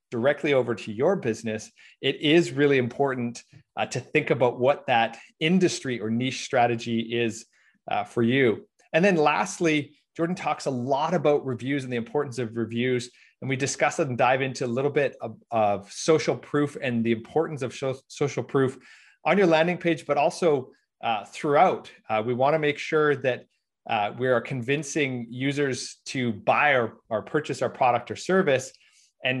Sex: male